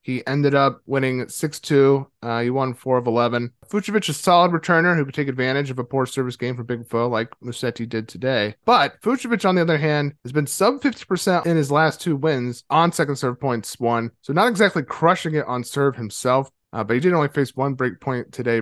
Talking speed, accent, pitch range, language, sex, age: 220 wpm, American, 120-165 Hz, English, male, 30-49